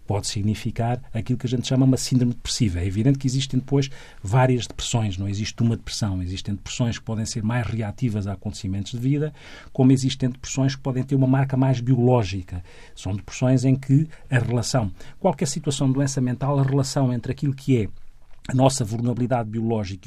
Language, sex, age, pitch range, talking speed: Portuguese, male, 40-59, 115-135 Hz, 190 wpm